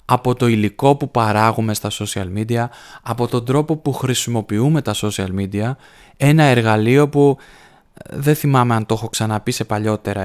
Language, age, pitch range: Greek, 20-39, 115-145 Hz